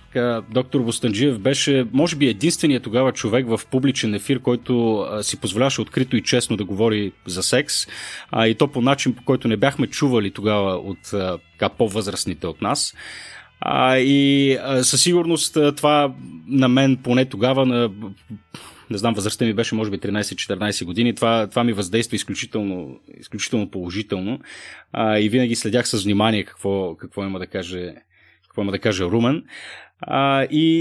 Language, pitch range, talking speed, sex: Bulgarian, 105-135 Hz, 150 wpm, male